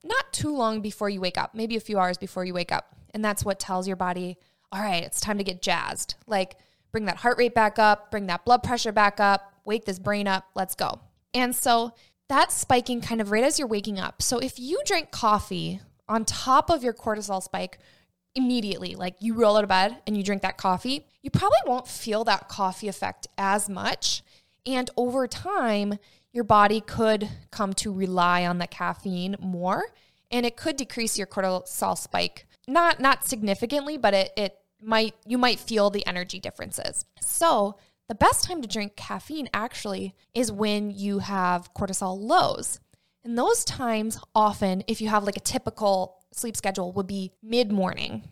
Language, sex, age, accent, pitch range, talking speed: English, female, 20-39, American, 190-240 Hz, 190 wpm